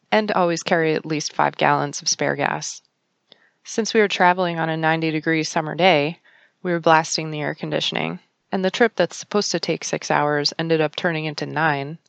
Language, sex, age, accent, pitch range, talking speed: English, female, 20-39, American, 155-185 Hz, 195 wpm